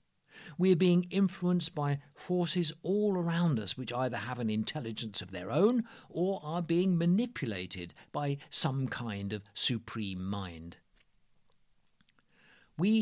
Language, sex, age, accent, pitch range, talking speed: English, male, 50-69, British, 110-170 Hz, 130 wpm